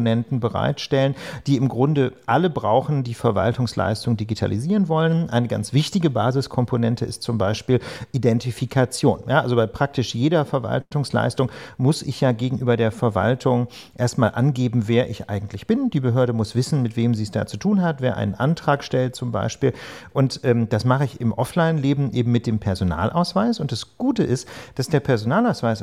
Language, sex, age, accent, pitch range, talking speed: German, male, 40-59, German, 115-150 Hz, 165 wpm